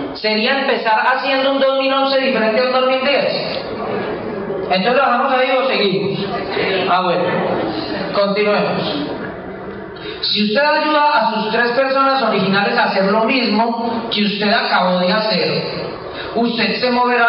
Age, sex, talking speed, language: 40-59, male, 130 wpm, Spanish